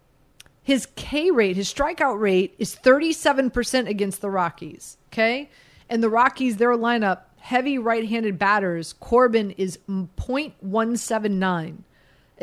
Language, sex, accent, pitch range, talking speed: English, female, American, 200-270 Hz, 110 wpm